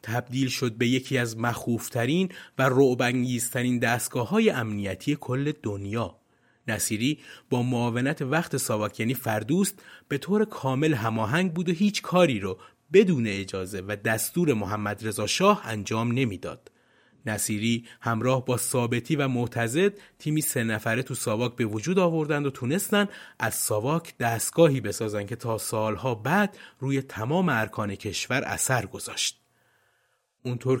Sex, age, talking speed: male, 30-49, 130 wpm